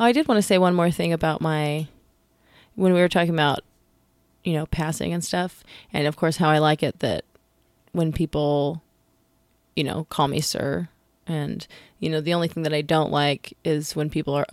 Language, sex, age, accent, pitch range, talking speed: English, female, 20-39, American, 150-180 Hz, 200 wpm